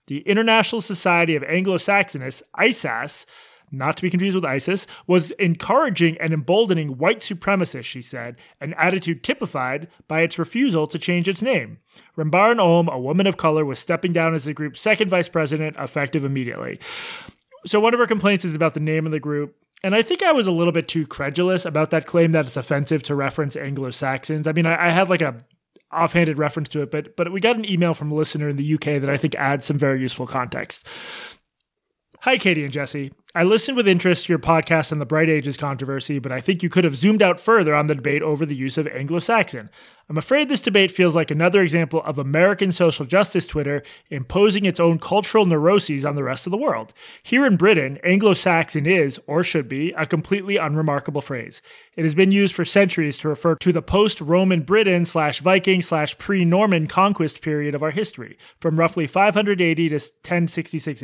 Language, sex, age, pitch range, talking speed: English, male, 30-49, 150-190 Hz, 200 wpm